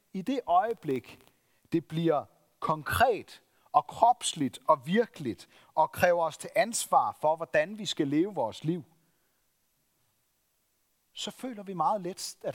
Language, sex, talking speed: Danish, male, 135 wpm